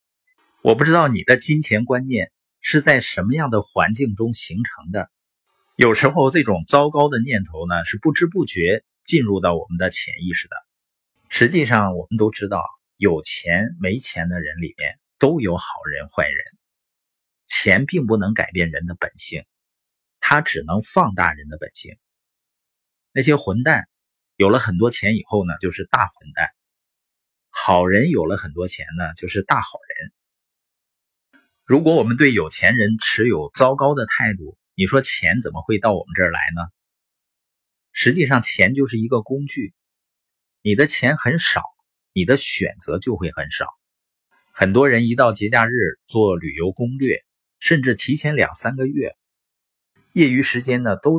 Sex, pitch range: male, 90-135 Hz